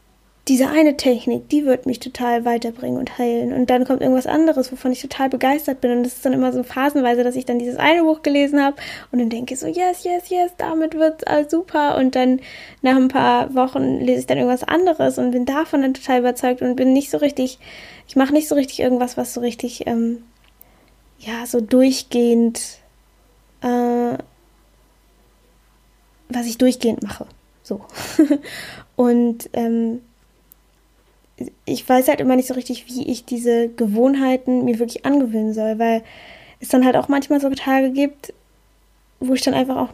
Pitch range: 230-265 Hz